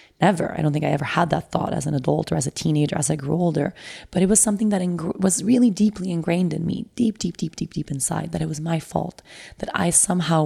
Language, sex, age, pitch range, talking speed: English, female, 20-39, 155-195 Hz, 260 wpm